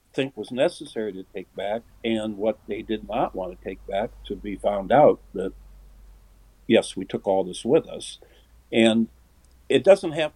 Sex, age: male, 60-79